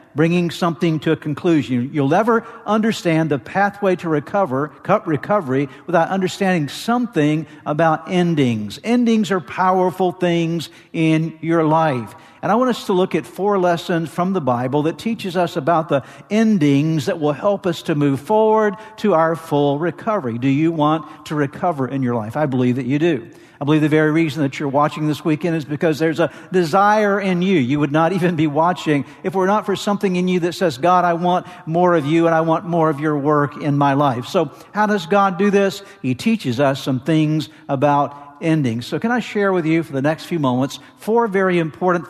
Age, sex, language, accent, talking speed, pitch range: 50-69, male, English, American, 200 wpm, 150-190 Hz